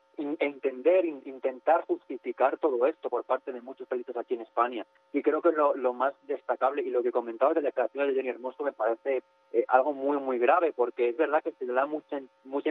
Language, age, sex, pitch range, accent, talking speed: Spanish, 30-49, male, 125-170 Hz, Spanish, 215 wpm